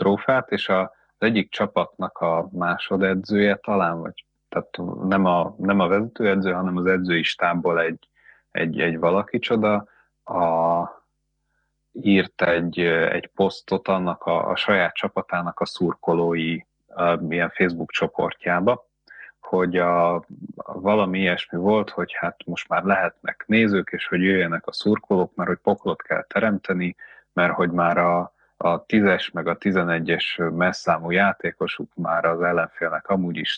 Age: 30-49